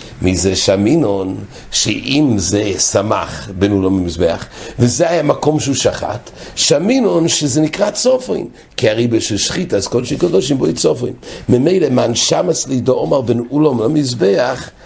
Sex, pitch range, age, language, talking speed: male, 110-160 Hz, 60-79, English, 135 wpm